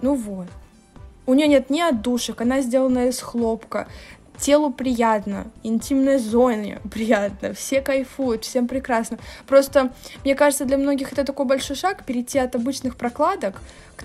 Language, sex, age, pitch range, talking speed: Russian, female, 20-39, 220-270 Hz, 145 wpm